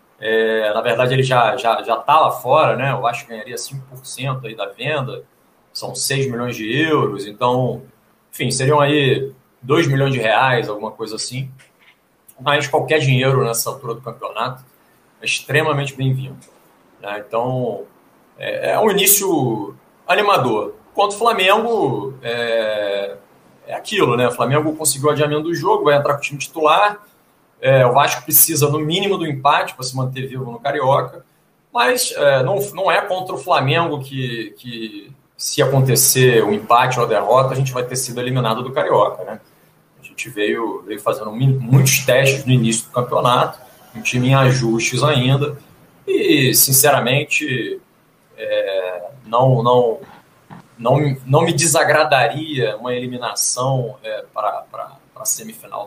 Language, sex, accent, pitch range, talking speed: Portuguese, male, Brazilian, 125-150 Hz, 155 wpm